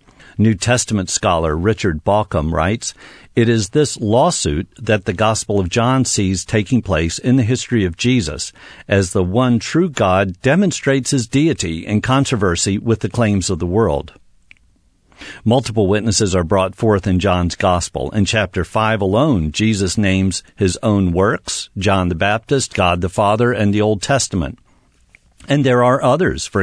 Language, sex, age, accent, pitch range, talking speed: English, male, 50-69, American, 95-125 Hz, 160 wpm